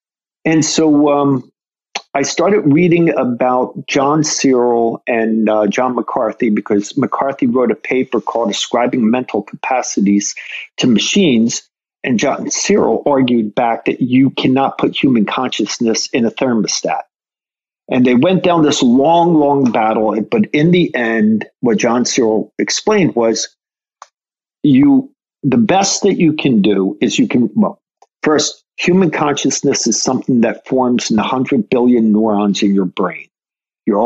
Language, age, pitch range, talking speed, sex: English, 50-69, 120-175 Hz, 145 wpm, male